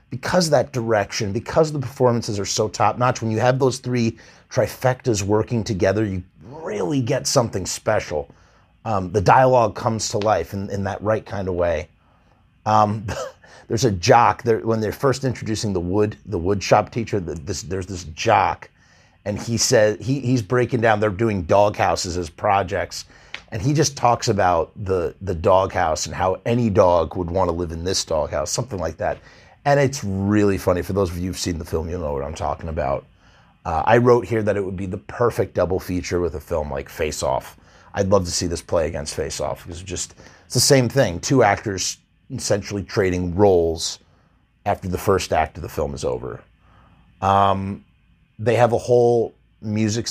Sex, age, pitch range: male, 30-49, 90-115 Hz